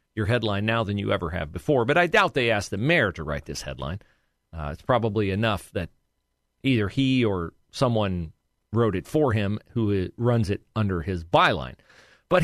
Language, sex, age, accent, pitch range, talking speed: English, male, 40-59, American, 100-140 Hz, 190 wpm